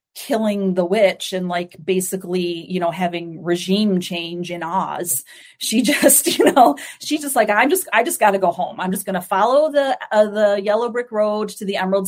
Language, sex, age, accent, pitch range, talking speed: English, female, 30-49, American, 180-215 Hz, 200 wpm